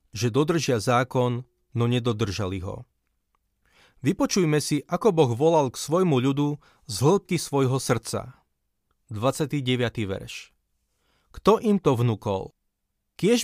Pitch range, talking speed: 125-160 Hz, 110 wpm